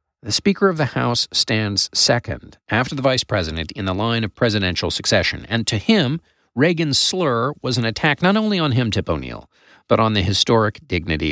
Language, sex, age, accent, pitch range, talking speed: English, male, 40-59, American, 95-150 Hz, 190 wpm